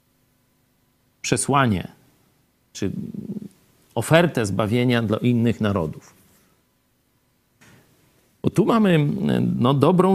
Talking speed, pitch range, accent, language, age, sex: 70 wpm, 125-190 Hz, native, Polish, 50-69, male